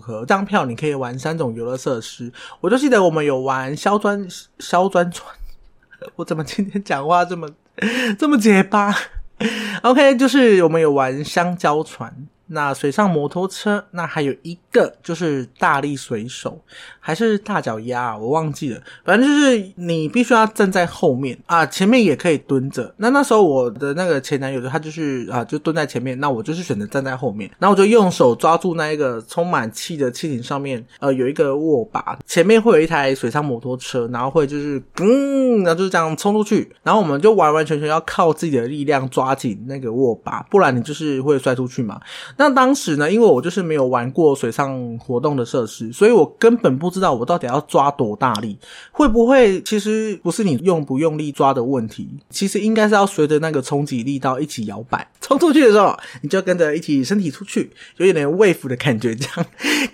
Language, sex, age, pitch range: Chinese, male, 20-39, 135-205 Hz